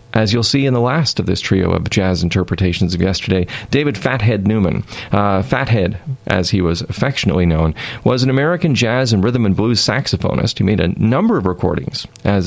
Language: English